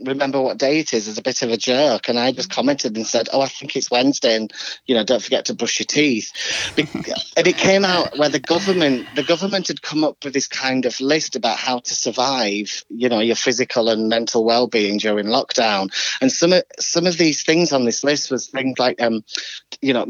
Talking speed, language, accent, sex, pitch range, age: 230 wpm, English, British, male, 115-145 Hz, 30-49